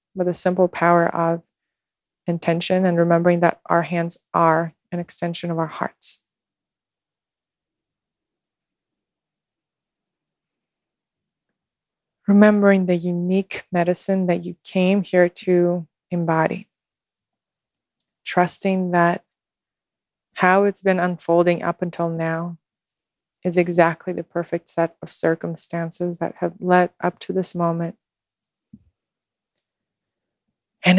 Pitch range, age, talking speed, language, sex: 170-185 Hz, 20-39, 100 wpm, English, female